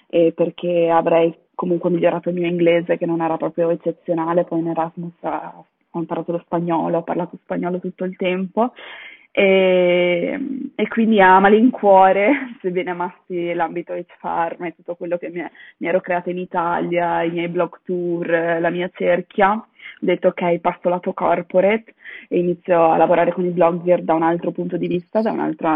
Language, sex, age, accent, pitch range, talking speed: Italian, female, 20-39, native, 170-180 Hz, 170 wpm